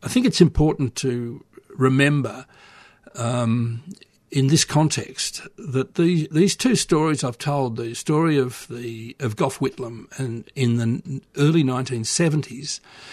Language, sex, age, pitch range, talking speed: English, male, 60-79, 120-145 Hz, 130 wpm